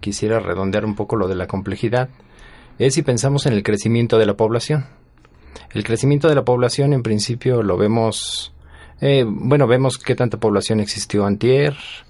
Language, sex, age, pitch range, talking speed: Spanish, male, 40-59, 110-140 Hz, 170 wpm